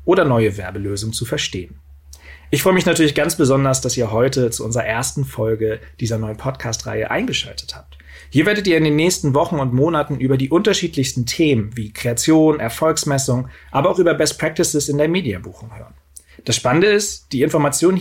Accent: German